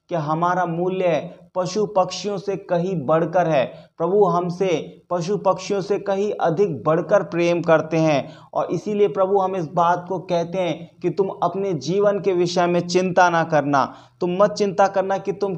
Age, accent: 30-49, native